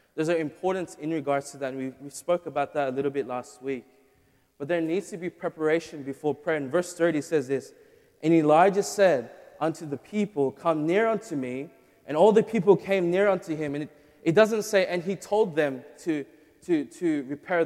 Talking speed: 205 wpm